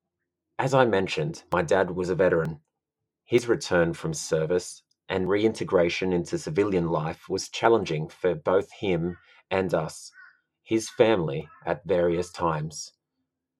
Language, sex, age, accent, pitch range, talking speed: English, male, 30-49, Australian, 90-120 Hz, 130 wpm